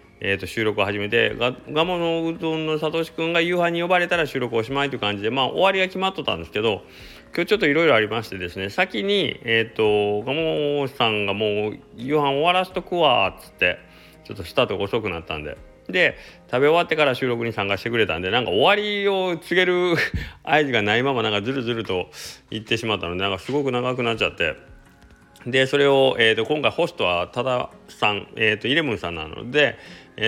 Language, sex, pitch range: Japanese, male, 95-140 Hz